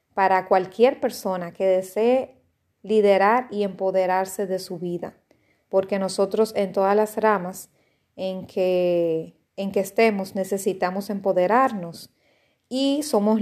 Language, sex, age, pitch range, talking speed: Spanish, female, 30-49, 185-215 Hz, 115 wpm